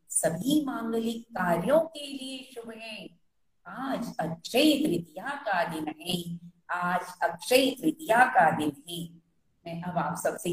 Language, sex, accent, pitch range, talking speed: Hindi, female, native, 170-270 Hz, 130 wpm